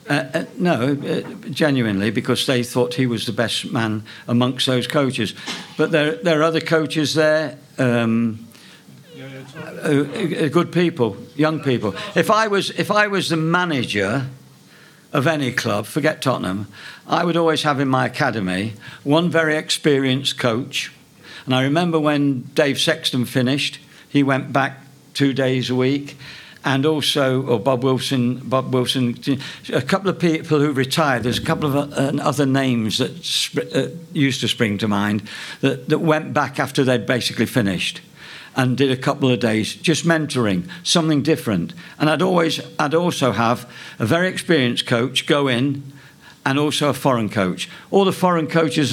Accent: British